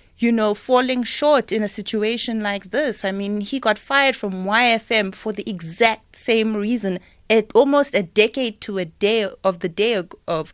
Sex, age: female, 30-49